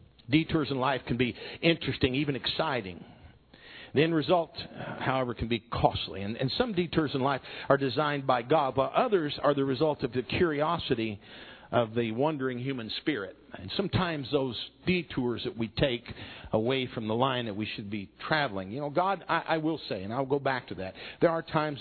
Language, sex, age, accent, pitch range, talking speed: English, male, 50-69, American, 115-155 Hz, 195 wpm